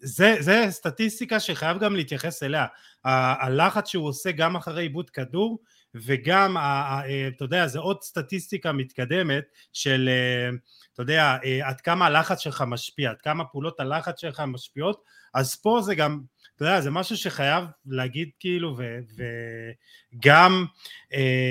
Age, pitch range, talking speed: 30-49, 135-190 Hz, 140 wpm